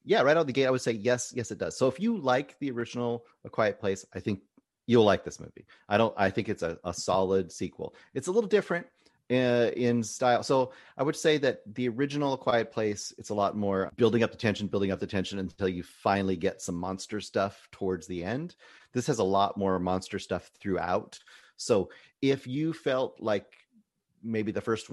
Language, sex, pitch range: English, male, 100-130 Hz